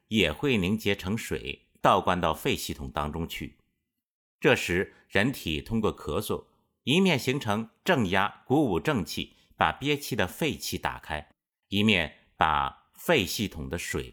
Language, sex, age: Chinese, male, 50-69